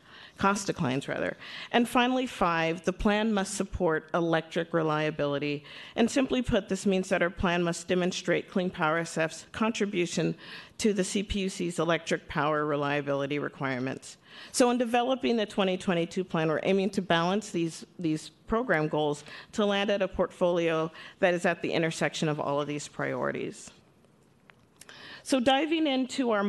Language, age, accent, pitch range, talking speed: English, 40-59, American, 160-205 Hz, 150 wpm